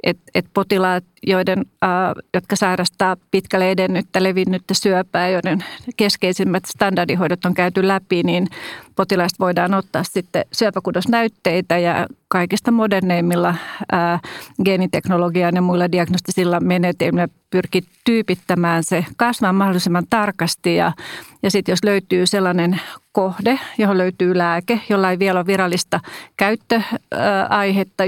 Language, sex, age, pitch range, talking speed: Finnish, female, 40-59, 175-195 Hz, 115 wpm